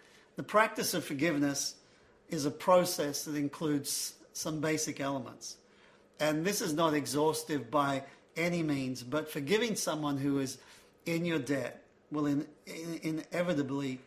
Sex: male